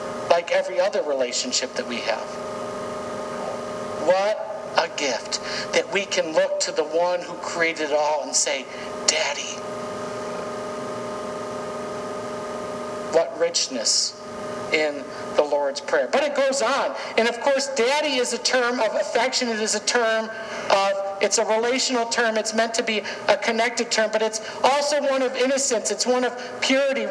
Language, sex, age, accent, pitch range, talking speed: English, male, 60-79, American, 200-235 Hz, 155 wpm